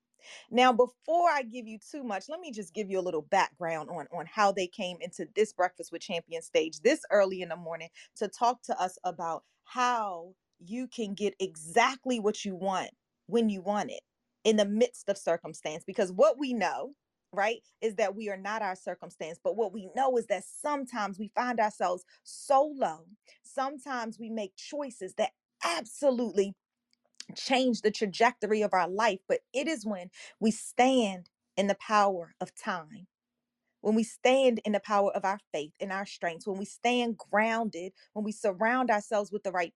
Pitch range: 190-245 Hz